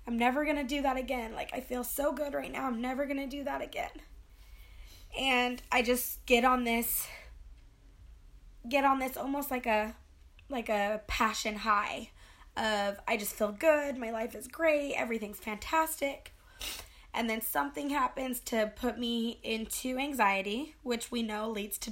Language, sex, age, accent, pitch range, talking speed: English, female, 20-39, American, 215-265 Hz, 170 wpm